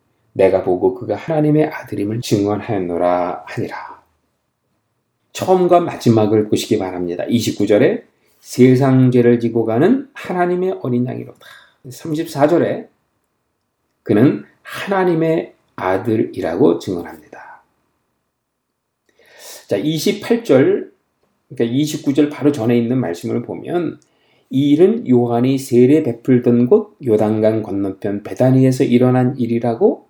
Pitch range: 115-160 Hz